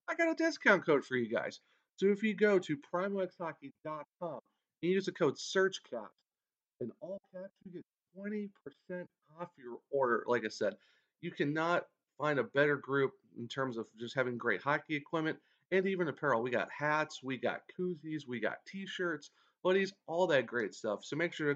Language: English